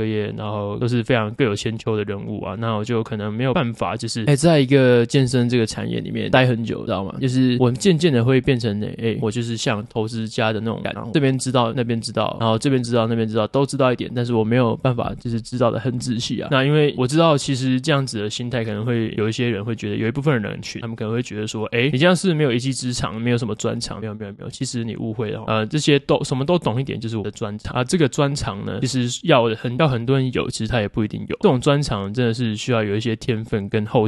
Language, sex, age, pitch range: Chinese, male, 20-39, 110-130 Hz